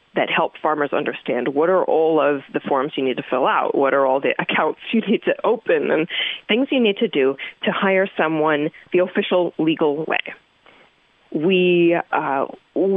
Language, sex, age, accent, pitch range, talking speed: English, female, 30-49, American, 155-225 Hz, 180 wpm